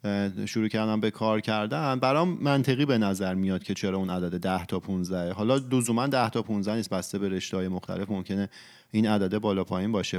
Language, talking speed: Persian, 200 wpm